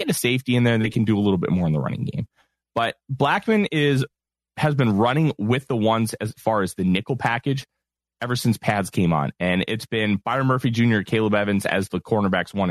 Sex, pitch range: male, 100-145 Hz